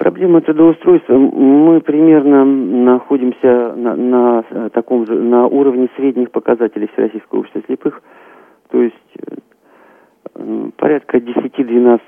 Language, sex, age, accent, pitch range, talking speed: Russian, male, 50-69, native, 105-130 Hz, 105 wpm